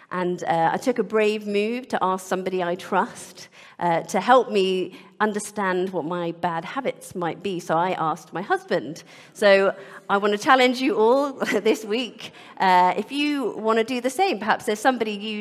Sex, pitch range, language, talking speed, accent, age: female, 180-225 Hz, English, 190 wpm, British, 40-59